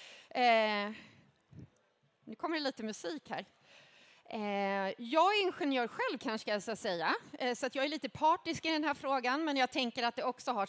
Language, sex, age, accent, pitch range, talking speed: Swedish, female, 30-49, native, 210-280 Hz, 195 wpm